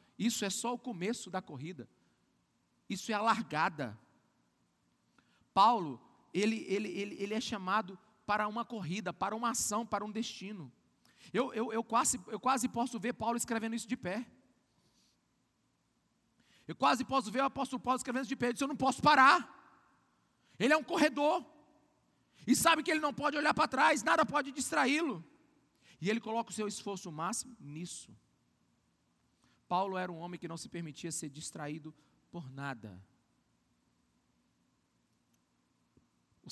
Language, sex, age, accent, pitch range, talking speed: Portuguese, male, 40-59, Brazilian, 155-230 Hz, 155 wpm